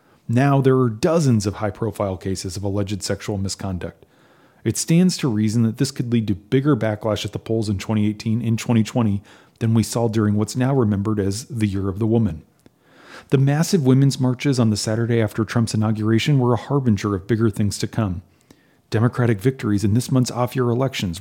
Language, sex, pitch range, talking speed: English, male, 105-125 Hz, 190 wpm